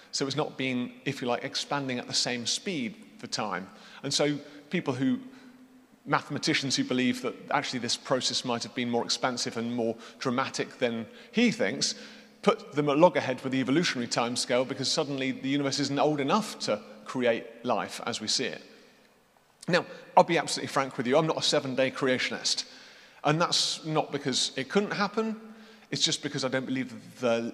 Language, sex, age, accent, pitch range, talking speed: English, male, 30-49, British, 130-150 Hz, 185 wpm